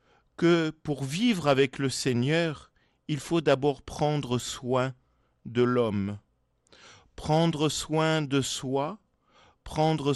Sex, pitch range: male, 120-155 Hz